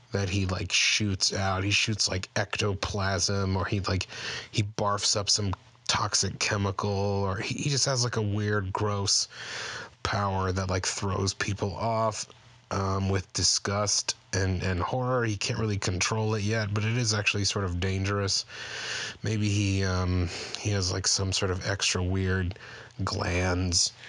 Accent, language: American, English